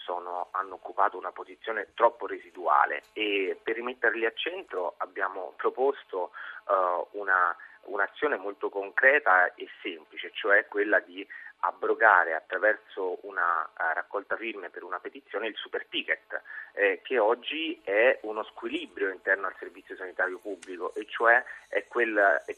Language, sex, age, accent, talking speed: Italian, male, 30-49, native, 135 wpm